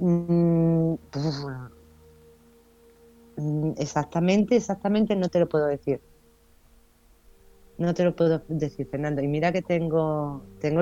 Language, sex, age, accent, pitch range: Spanish, female, 30-49, Spanish, 130-170 Hz